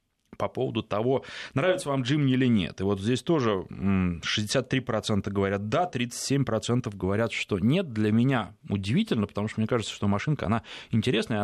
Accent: native